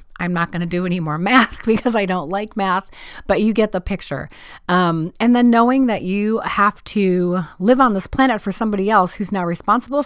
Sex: female